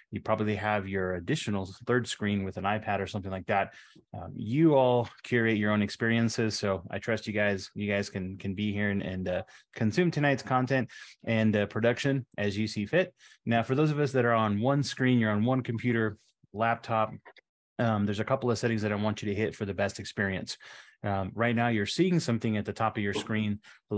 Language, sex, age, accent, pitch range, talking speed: English, male, 30-49, American, 100-120 Hz, 225 wpm